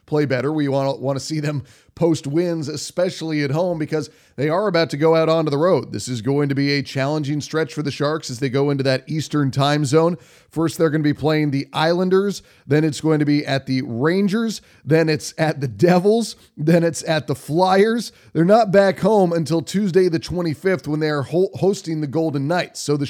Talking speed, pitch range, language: 220 wpm, 140-165 Hz, English